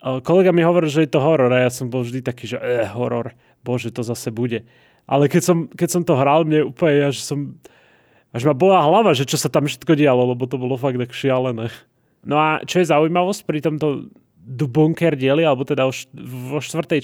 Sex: male